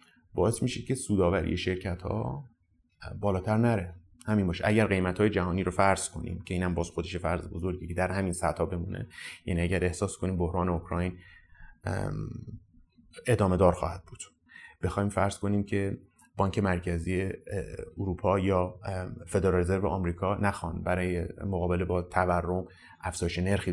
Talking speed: 145 wpm